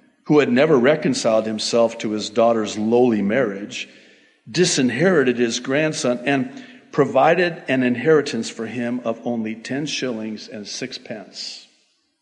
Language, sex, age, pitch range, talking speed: English, male, 50-69, 115-190 Hz, 125 wpm